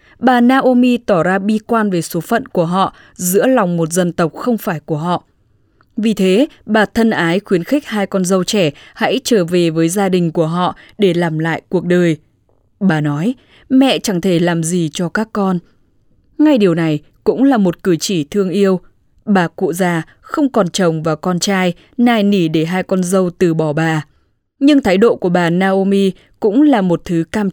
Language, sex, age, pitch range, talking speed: English, female, 10-29, 170-225 Hz, 205 wpm